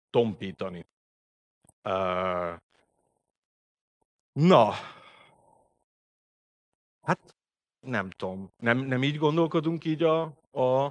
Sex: male